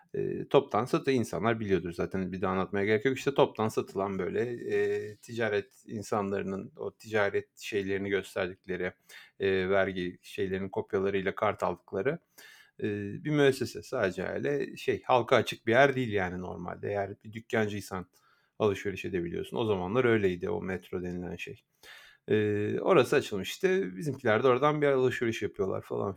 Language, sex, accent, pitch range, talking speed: Turkish, male, native, 100-135 Hz, 145 wpm